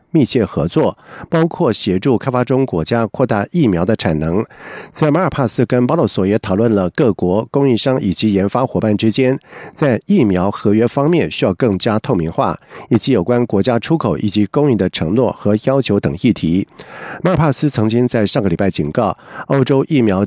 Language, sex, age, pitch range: Chinese, male, 50-69, 105-135 Hz